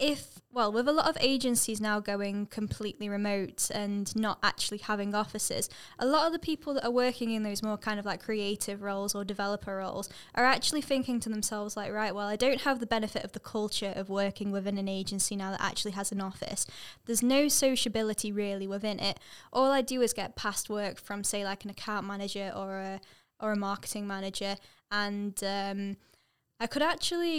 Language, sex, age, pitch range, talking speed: English, female, 10-29, 200-235 Hz, 200 wpm